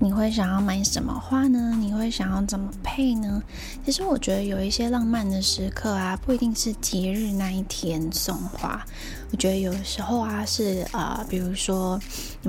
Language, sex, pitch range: Chinese, female, 180-235 Hz